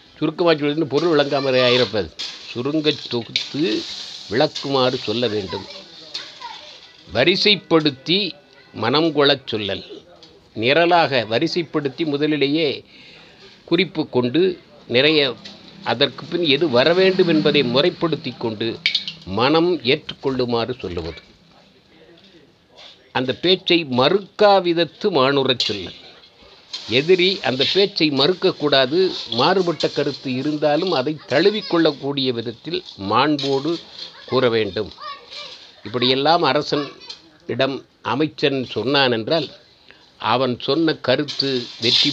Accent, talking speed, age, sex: native, 80 wpm, 60-79, male